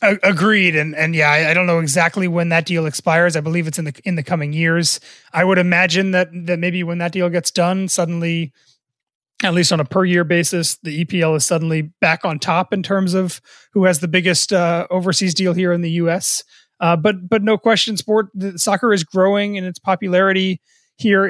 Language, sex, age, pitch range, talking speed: English, male, 30-49, 170-190 Hz, 215 wpm